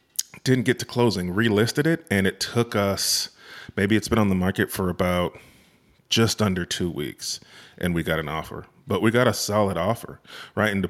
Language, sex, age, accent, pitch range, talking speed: English, male, 30-49, American, 85-105 Hz, 200 wpm